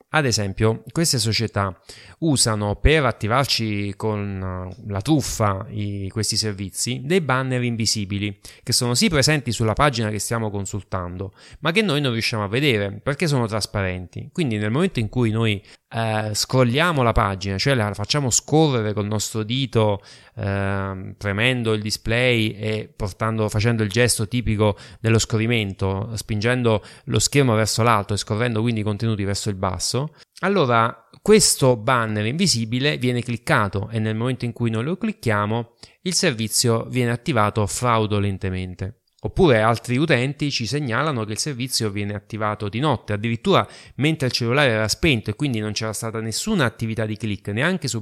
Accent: native